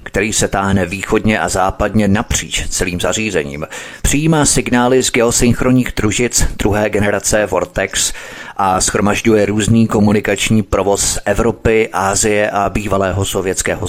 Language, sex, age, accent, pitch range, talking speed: Czech, male, 30-49, native, 95-110 Hz, 115 wpm